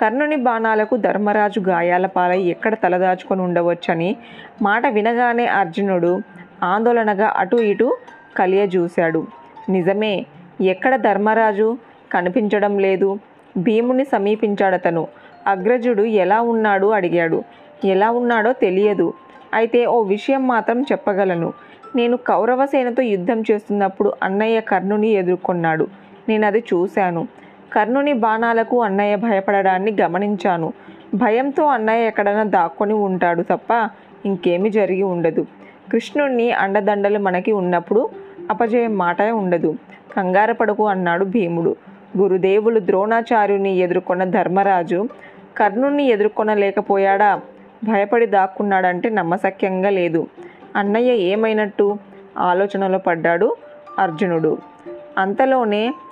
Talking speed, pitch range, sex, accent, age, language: 90 wpm, 185-230 Hz, female, native, 20-39, Telugu